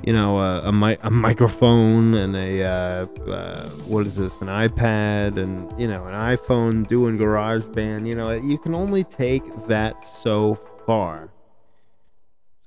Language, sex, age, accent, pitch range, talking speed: English, male, 20-39, American, 95-120 Hz, 155 wpm